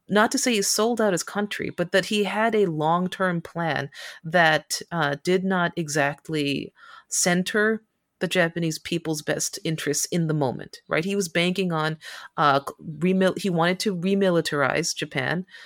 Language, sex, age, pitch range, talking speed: English, female, 30-49, 155-190 Hz, 155 wpm